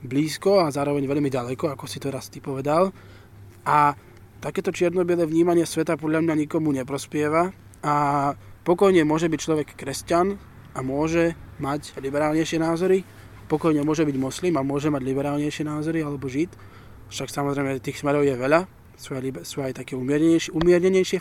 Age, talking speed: 20-39, 155 wpm